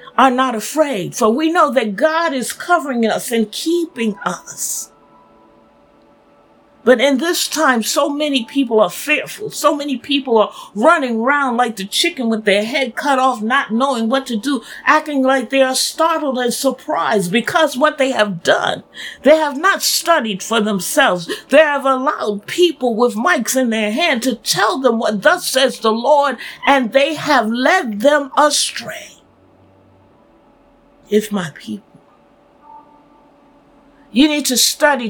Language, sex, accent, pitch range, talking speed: English, female, American, 225-295 Hz, 155 wpm